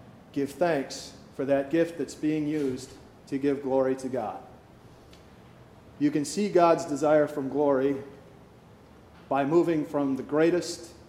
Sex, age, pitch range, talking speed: male, 40-59, 135-165 Hz, 135 wpm